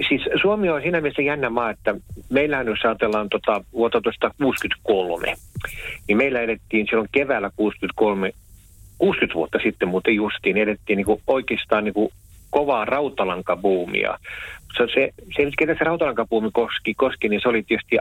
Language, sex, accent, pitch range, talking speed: Finnish, male, native, 100-115 Hz, 150 wpm